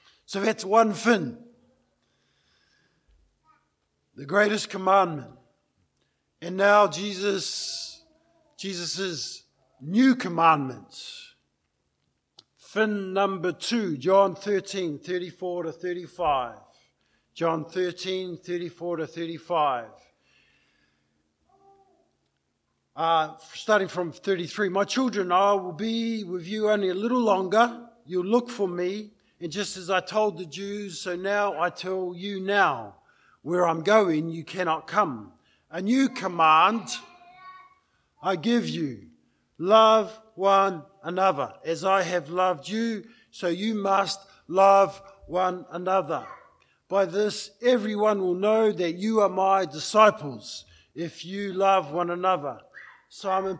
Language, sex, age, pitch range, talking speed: English, male, 50-69, 175-210 Hz, 110 wpm